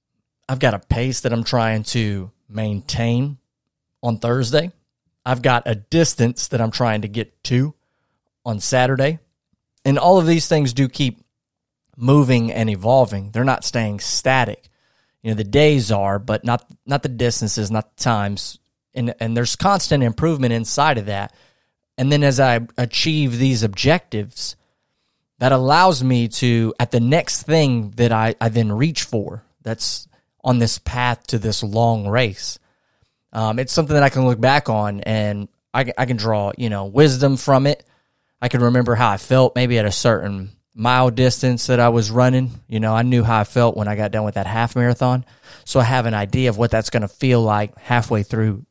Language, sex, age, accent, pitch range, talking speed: English, male, 30-49, American, 110-130 Hz, 185 wpm